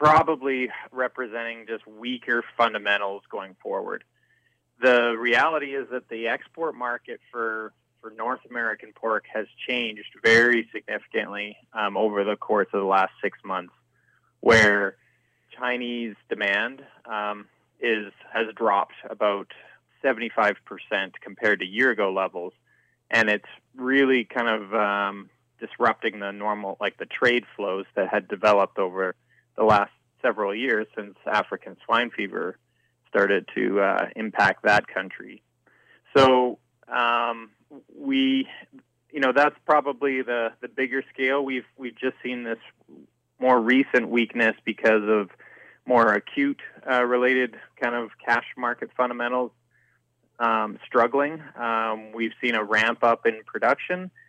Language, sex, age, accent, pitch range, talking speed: English, male, 20-39, American, 110-130 Hz, 130 wpm